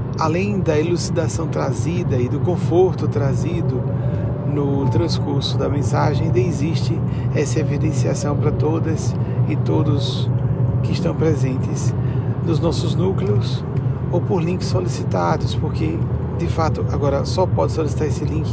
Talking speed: 125 wpm